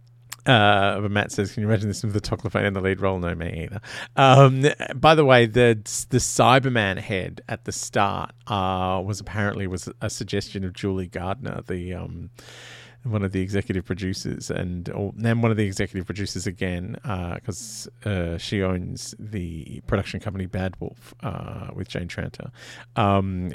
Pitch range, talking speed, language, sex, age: 100-125 Hz, 170 wpm, English, male, 30-49